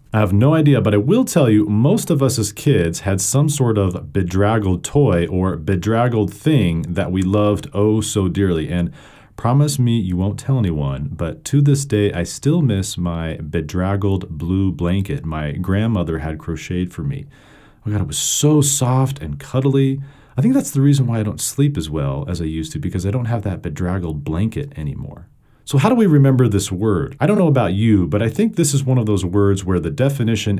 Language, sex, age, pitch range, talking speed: English, male, 40-59, 90-140 Hz, 210 wpm